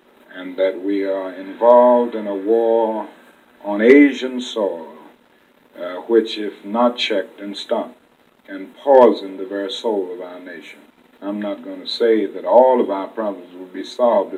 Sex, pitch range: male, 100-130 Hz